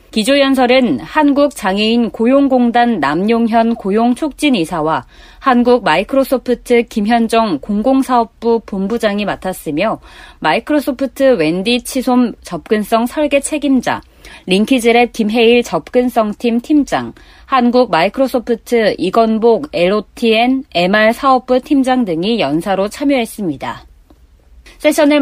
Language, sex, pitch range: Korean, female, 205-260 Hz